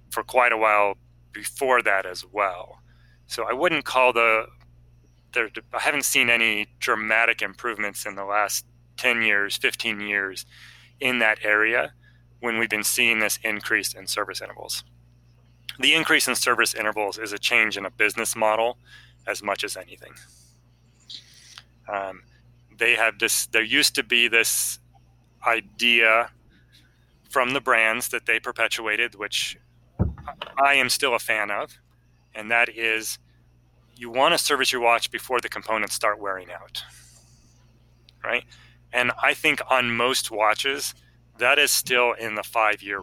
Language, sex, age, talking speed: English, male, 30-49, 150 wpm